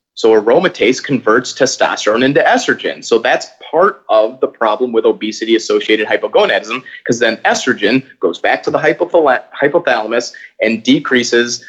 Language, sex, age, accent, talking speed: English, male, 30-49, American, 135 wpm